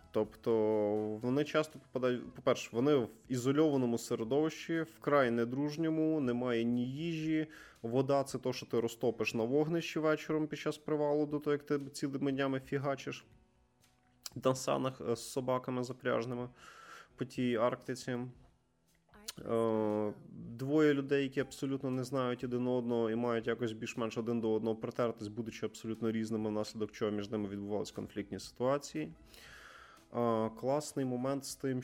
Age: 20-39